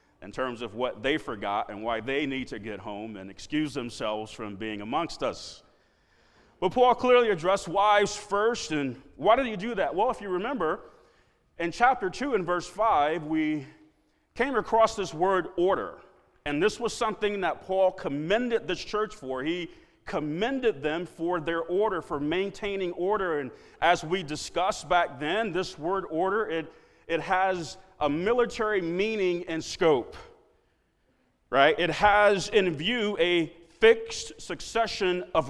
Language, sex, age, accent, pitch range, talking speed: English, male, 40-59, American, 165-225 Hz, 155 wpm